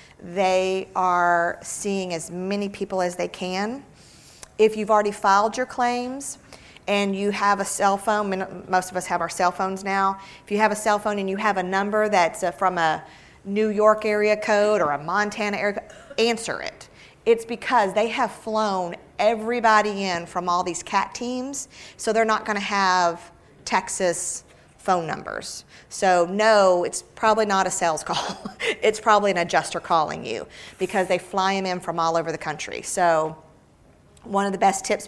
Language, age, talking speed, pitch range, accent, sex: English, 40-59, 180 wpm, 180-210 Hz, American, female